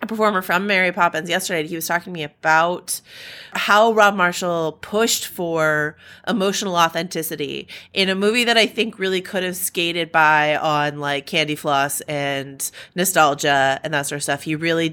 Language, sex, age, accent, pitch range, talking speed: English, female, 30-49, American, 155-195 Hz, 175 wpm